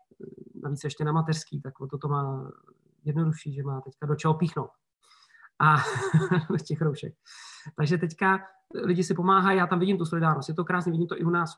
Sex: male